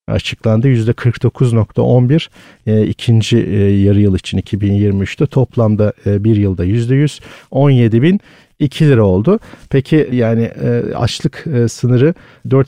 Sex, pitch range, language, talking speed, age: male, 110-145 Hz, Turkish, 115 wpm, 50-69